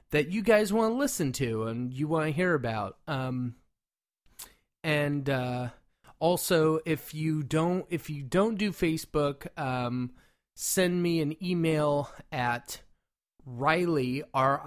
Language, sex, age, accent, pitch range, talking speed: English, male, 30-49, American, 130-175 Hz, 135 wpm